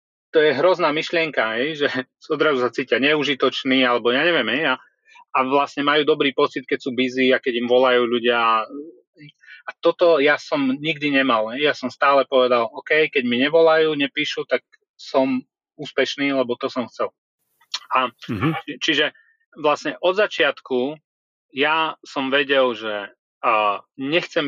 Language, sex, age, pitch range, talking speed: Slovak, male, 30-49, 125-155 Hz, 140 wpm